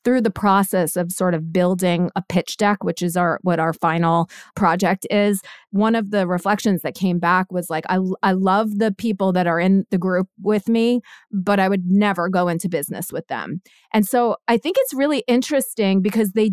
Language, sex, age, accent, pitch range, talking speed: English, female, 30-49, American, 180-215 Hz, 205 wpm